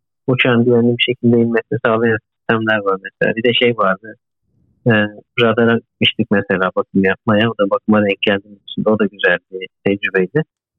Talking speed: 160 wpm